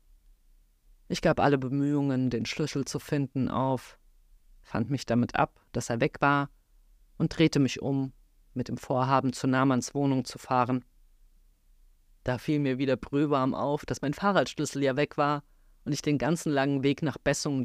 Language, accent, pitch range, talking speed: German, German, 125-140 Hz, 165 wpm